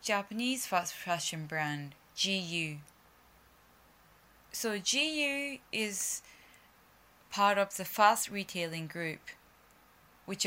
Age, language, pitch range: 10-29, Japanese, 165-210 Hz